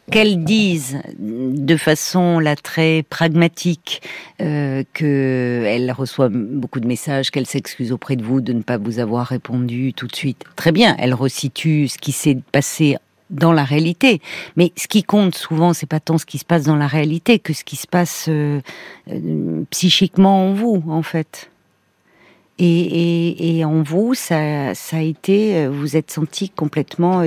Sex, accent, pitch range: female, French, 145-175 Hz